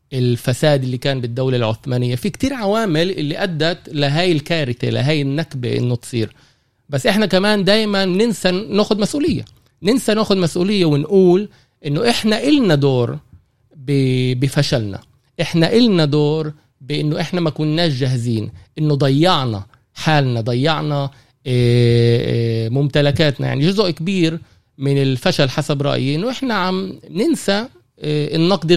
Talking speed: 115 wpm